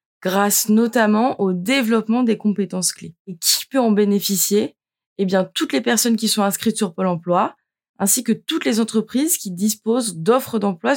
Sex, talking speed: female, 175 wpm